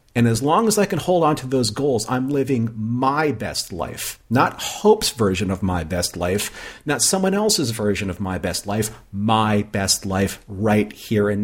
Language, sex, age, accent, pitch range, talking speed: English, male, 40-59, American, 105-140 Hz, 195 wpm